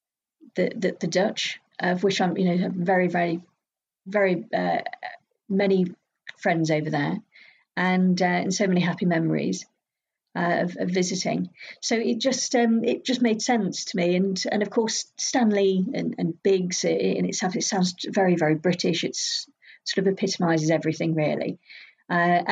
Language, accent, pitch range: English, British, 180-215 Hz